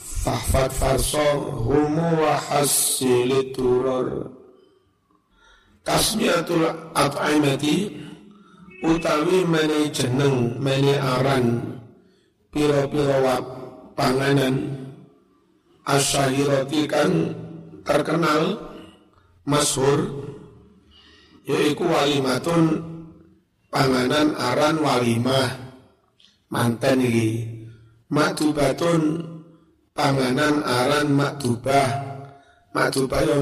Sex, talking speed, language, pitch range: male, 60 wpm, Indonesian, 125-150 Hz